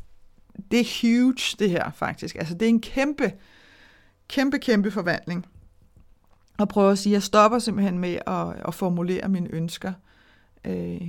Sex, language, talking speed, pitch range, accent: female, Danish, 155 wpm, 165-220 Hz, native